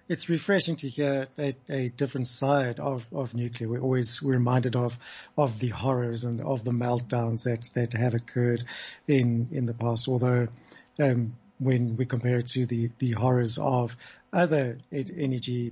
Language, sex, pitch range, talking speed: English, male, 125-145 Hz, 175 wpm